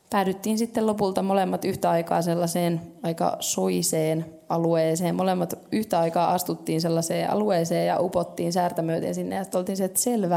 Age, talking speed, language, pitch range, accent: 20-39, 140 wpm, Finnish, 170-210 Hz, native